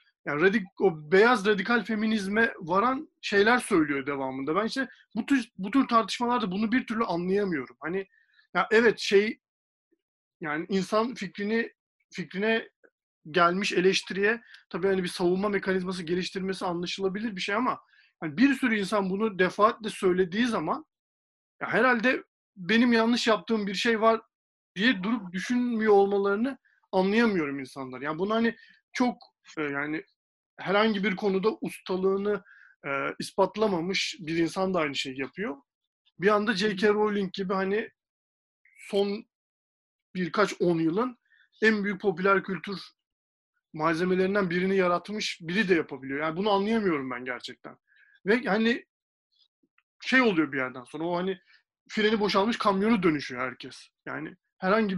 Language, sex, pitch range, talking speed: Turkish, male, 180-225 Hz, 135 wpm